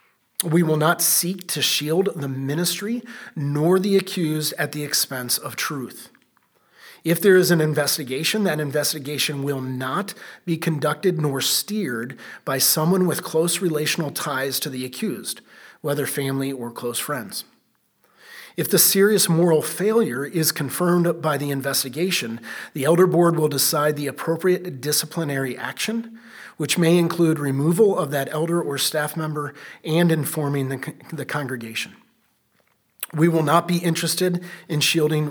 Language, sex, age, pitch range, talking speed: English, male, 30-49, 145-180 Hz, 145 wpm